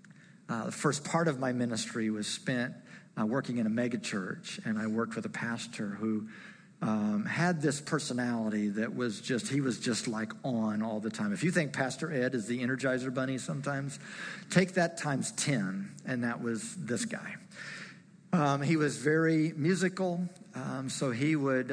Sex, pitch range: male, 125-185 Hz